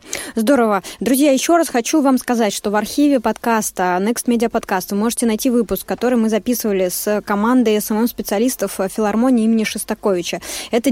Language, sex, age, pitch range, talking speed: Russian, female, 20-39, 210-260 Hz, 160 wpm